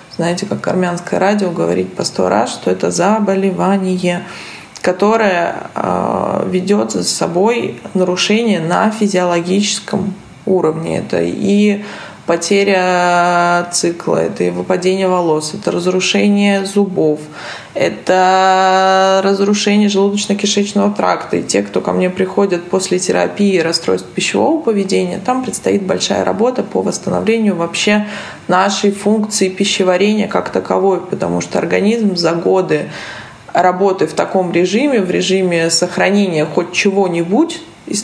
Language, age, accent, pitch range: Russian, 20-39, native, 175-205 Hz